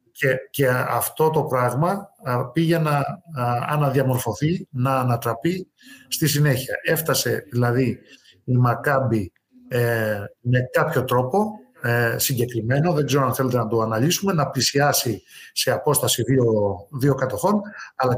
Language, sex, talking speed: Greek, male, 130 wpm